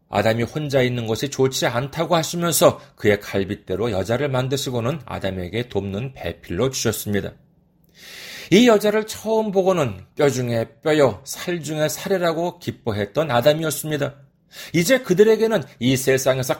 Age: 40-59